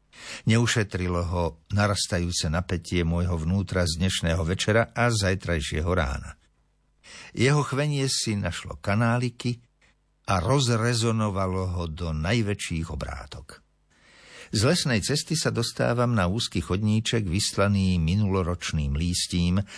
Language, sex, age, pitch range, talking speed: Slovak, male, 50-69, 85-110 Hz, 105 wpm